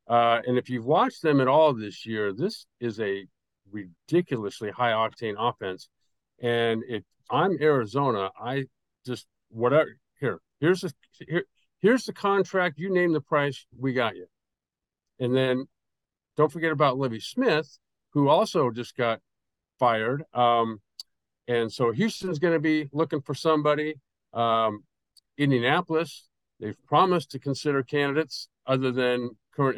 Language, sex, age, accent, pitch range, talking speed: English, male, 50-69, American, 115-145 Hz, 140 wpm